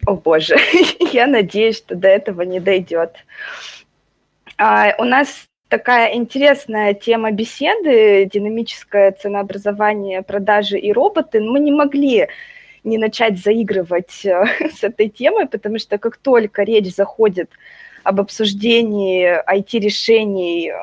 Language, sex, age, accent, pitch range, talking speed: Russian, female, 20-39, native, 195-240 Hz, 110 wpm